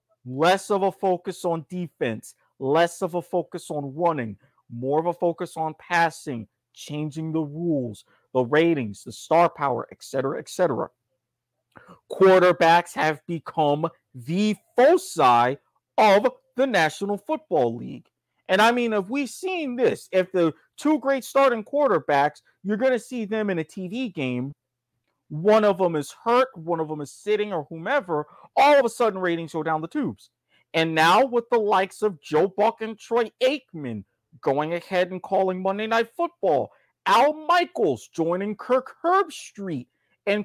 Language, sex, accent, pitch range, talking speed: English, male, American, 155-235 Hz, 160 wpm